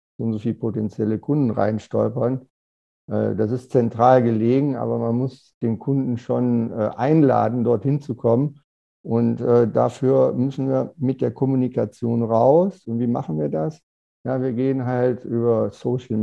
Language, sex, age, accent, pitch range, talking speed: German, male, 50-69, German, 110-130 Hz, 145 wpm